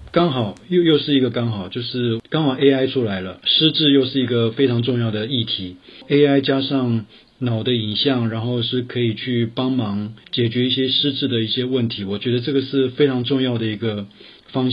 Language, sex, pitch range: Chinese, male, 105-130 Hz